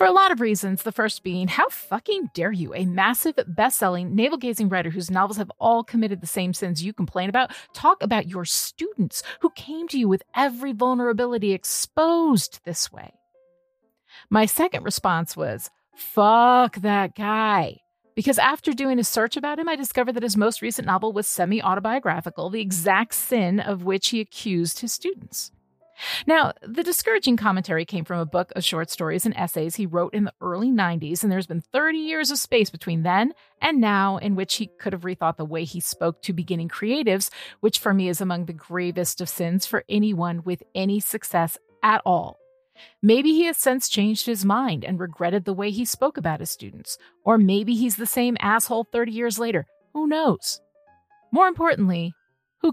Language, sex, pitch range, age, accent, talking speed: English, female, 185-250 Hz, 30-49, American, 185 wpm